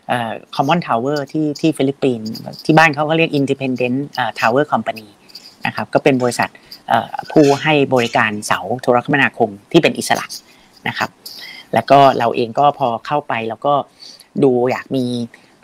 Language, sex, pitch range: Thai, female, 120-150 Hz